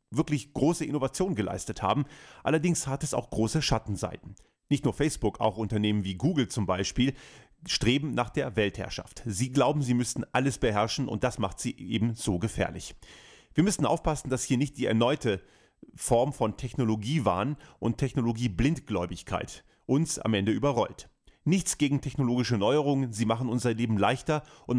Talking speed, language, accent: 155 wpm, German, German